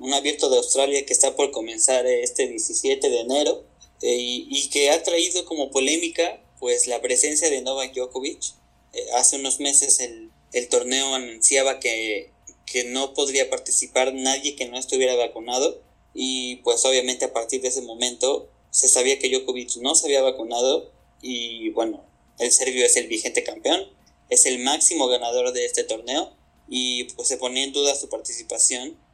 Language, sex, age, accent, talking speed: Spanish, male, 20-39, Mexican, 170 wpm